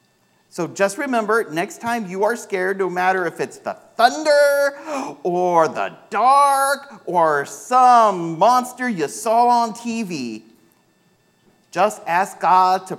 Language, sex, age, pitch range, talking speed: English, male, 40-59, 130-195 Hz, 130 wpm